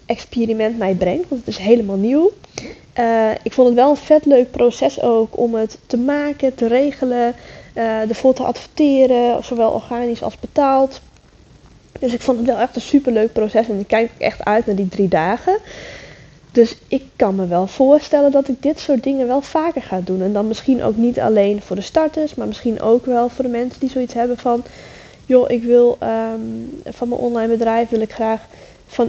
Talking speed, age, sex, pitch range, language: 200 wpm, 10-29, female, 215-260 Hz, English